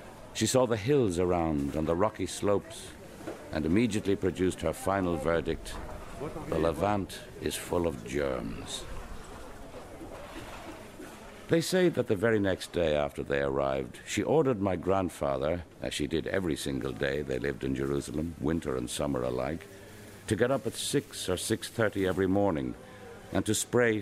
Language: English